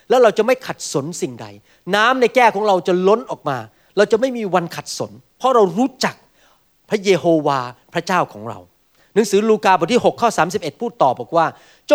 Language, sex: Thai, male